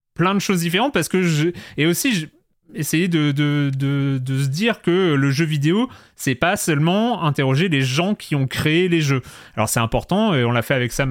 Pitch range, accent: 120-150 Hz, French